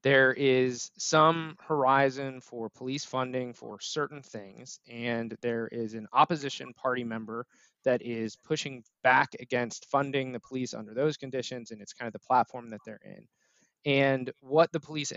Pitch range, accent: 120-155 Hz, American